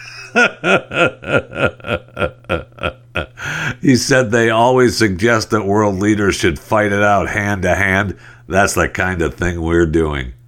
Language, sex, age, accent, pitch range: English, male, 60-79, American, 85-110 Hz